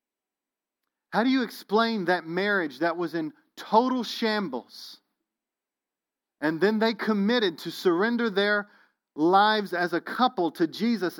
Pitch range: 195-255 Hz